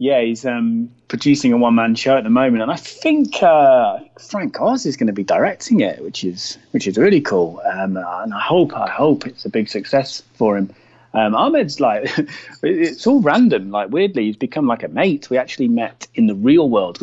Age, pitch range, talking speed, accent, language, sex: 30-49, 105-170 Hz, 210 wpm, British, English, male